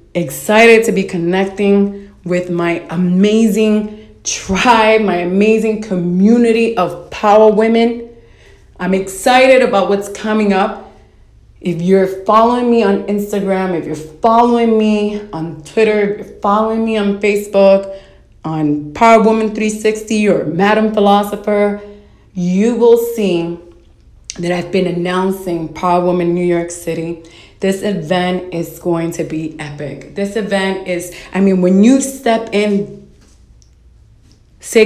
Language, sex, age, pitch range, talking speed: English, female, 30-49, 180-230 Hz, 125 wpm